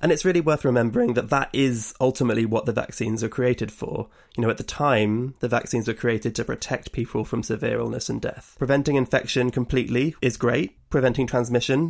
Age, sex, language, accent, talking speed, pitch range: 20-39, male, English, British, 195 wpm, 115-135 Hz